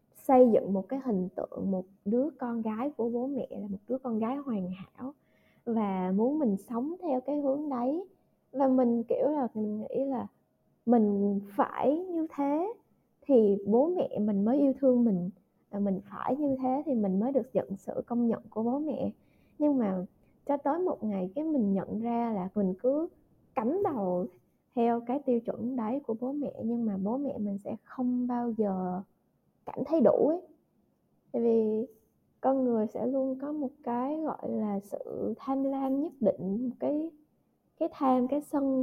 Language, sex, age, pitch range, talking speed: Vietnamese, female, 20-39, 220-280 Hz, 185 wpm